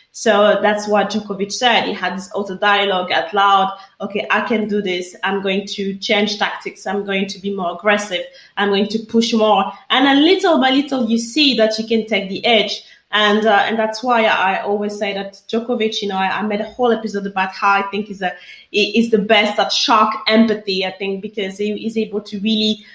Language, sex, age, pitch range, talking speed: English, female, 20-39, 195-225 Hz, 220 wpm